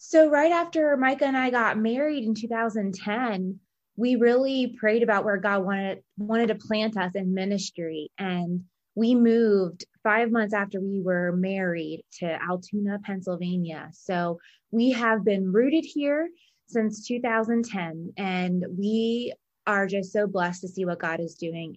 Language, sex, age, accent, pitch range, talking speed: English, female, 20-39, American, 180-220 Hz, 150 wpm